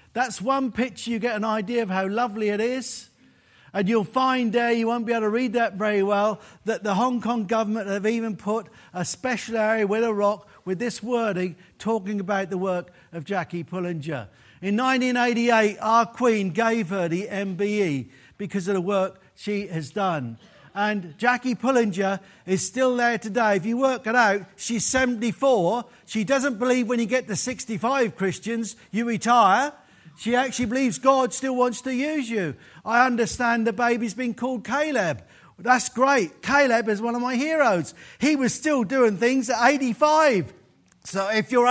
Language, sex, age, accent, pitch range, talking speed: English, male, 50-69, British, 205-255 Hz, 175 wpm